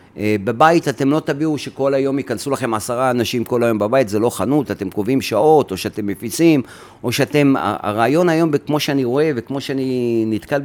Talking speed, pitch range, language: 180 wpm, 110-145 Hz, Hebrew